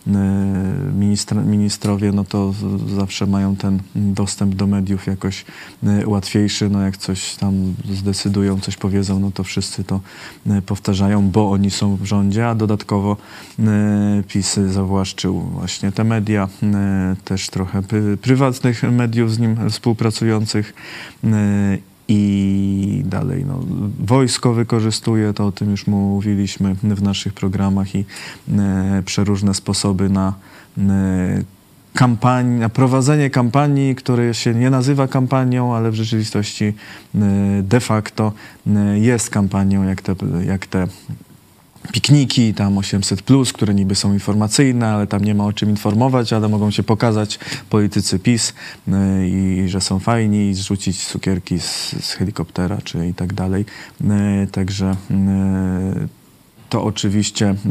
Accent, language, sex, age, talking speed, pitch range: native, Polish, male, 20-39, 120 wpm, 95-115 Hz